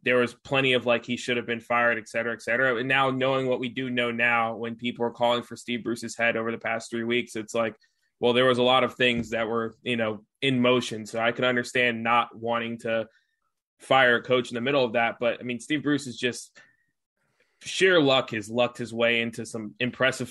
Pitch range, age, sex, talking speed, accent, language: 115-125 Hz, 20-39, male, 240 wpm, American, English